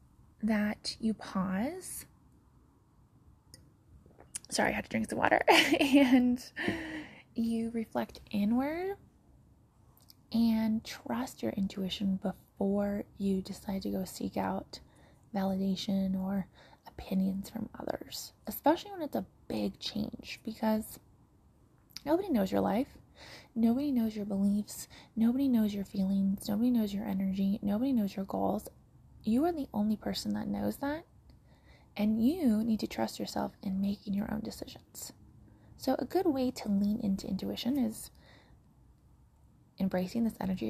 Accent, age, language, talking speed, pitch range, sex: American, 20-39, English, 130 wpm, 190-245 Hz, female